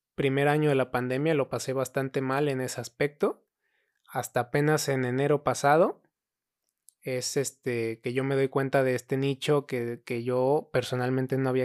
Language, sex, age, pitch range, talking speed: Spanish, male, 20-39, 125-150 Hz, 170 wpm